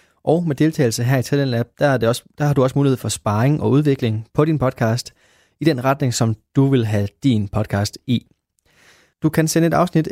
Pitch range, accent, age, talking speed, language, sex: 115-150 Hz, native, 20-39, 200 wpm, Danish, male